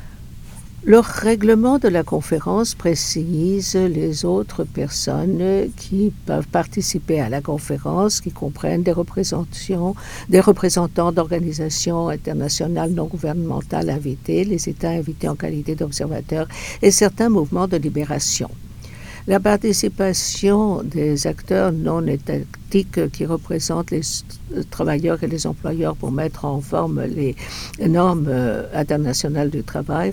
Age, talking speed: 60-79, 120 wpm